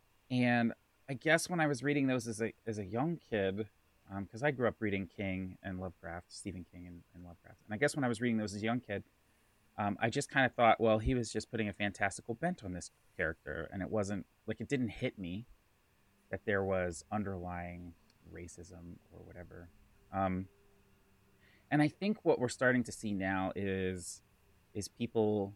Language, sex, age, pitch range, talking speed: English, male, 30-49, 95-115 Hz, 200 wpm